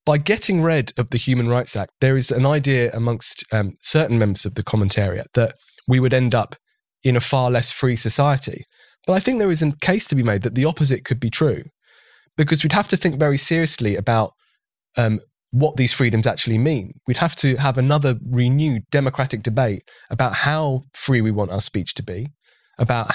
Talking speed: 200 wpm